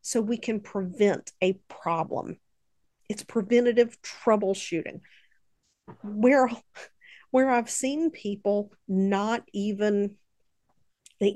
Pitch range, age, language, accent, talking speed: 195-245 Hz, 50-69, English, American, 90 wpm